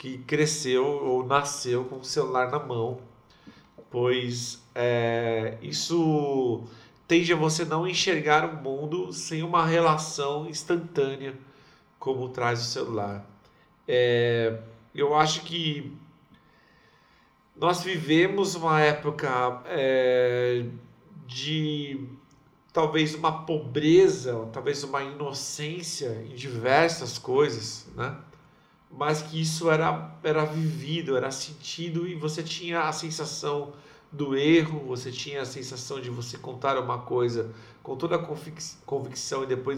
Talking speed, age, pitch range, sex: 110 wpm, 50-69, 125-155 Hz, male